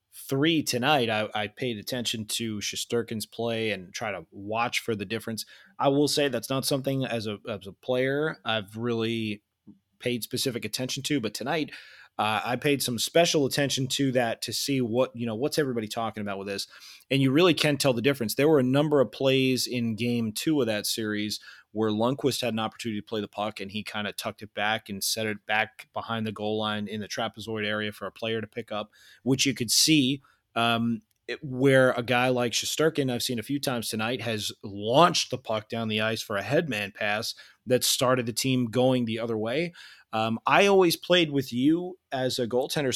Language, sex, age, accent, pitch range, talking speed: English, male, 30-49, American, 110-135 Hz, 210 wpm